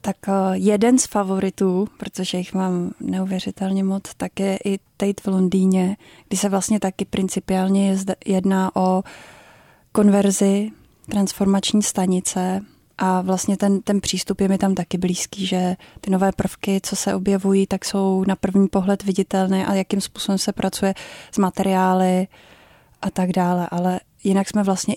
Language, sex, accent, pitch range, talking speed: Czech, female, native, 190-200 Hz, 150 wpm